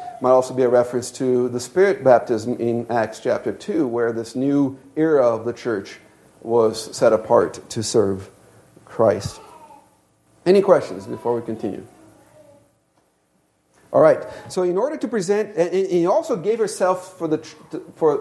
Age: 40-59